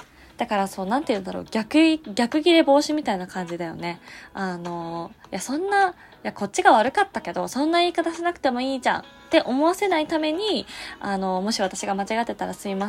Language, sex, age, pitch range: Japanese, female, 20-39, 195-275 Hz